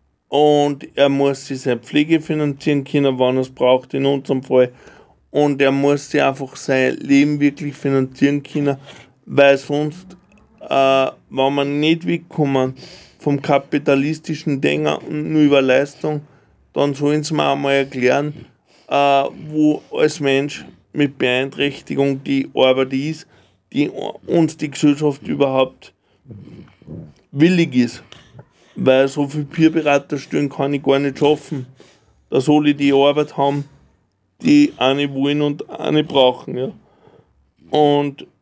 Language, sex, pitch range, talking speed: German, male, 135-155 Hz, 130 wpm